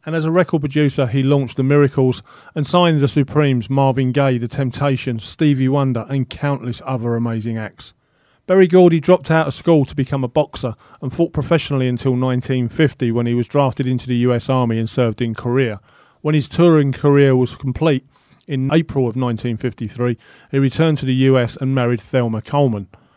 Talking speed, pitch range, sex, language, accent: 180 wpm, 120-145 Hz, male, English, British